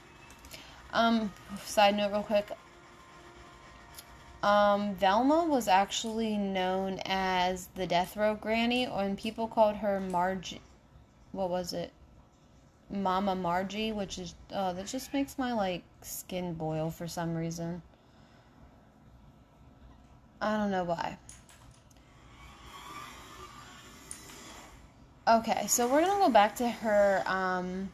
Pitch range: 185-220 Hz